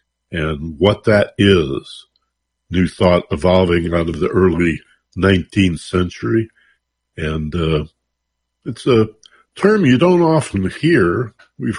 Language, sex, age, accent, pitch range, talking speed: English, male, 60-79, American, 80-95 Hz, 115 wpm